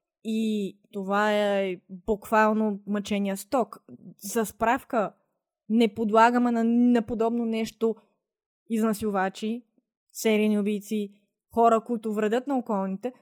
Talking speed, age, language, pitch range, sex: 95 wpm, 20-39, Bulgarian, 210-250 Hz, female